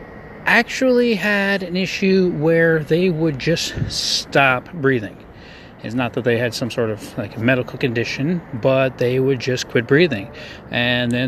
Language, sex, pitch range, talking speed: English, male, 120-160 Hz, 160 wpm